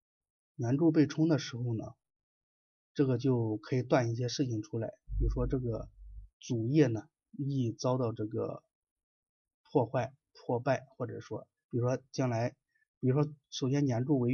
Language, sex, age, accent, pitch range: Chinese, male, 30-49, native, 115-145 Hz